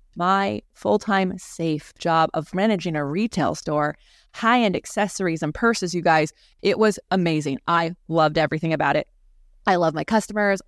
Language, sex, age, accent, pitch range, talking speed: English, female, 20-39, American, 160-185 Hz, 150 wpm